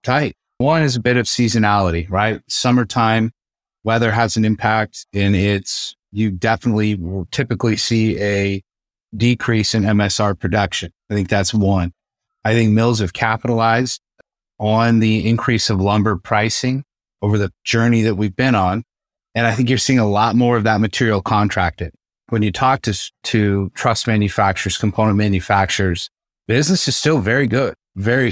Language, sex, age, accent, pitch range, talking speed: English, male, 30-49, American, 100-115 Hz, 155 wpm